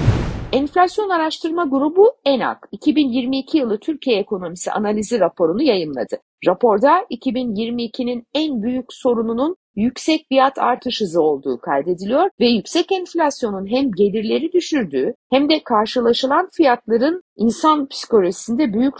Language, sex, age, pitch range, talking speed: Turkish, female, 60-79, 225-310 Hz, 110 wpm